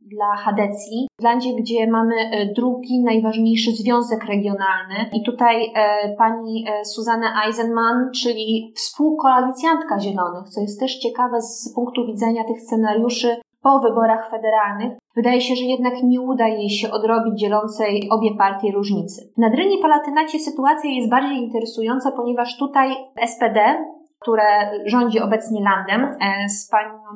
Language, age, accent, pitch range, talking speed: Polish, 20-39, native, 215-245 Hz, 135 wpm